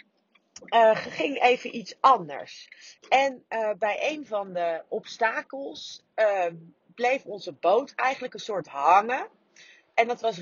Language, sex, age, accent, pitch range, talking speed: Dutch, female, 40-59, Dutch, 190-260 Hz, 130 wpm